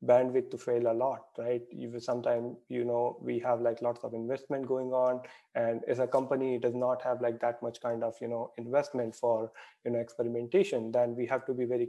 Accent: Indian